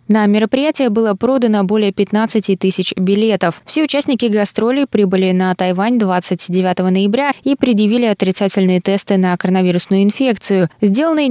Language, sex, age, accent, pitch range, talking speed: Russian, female, 20-39, native, 185-225 Hz, 125 wpm